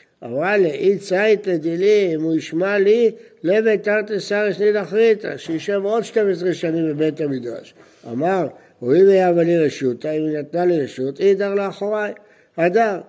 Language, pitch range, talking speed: Hebrew, 145-200 Hz, 155 wpm